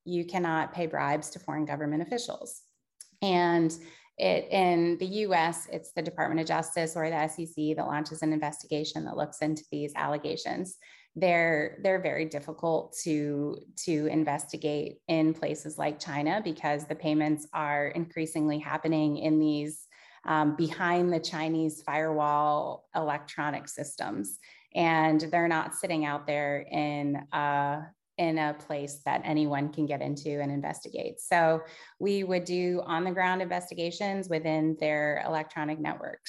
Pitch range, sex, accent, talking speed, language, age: 150-170 Hz, female, American, 135 wpm, English, 30-49